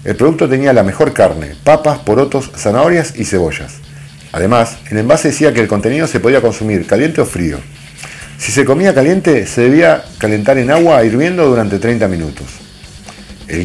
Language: English